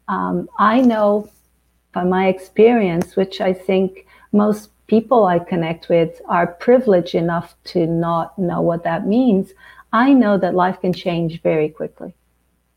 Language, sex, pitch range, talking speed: English, female, 165-205 Hz, 145 wpm